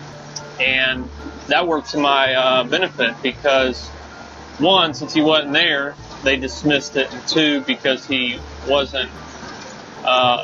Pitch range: 130-175 Hz